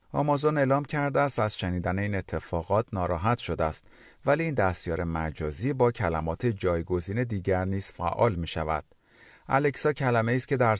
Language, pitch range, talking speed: Persian, 90-135 Hz, 155 wpm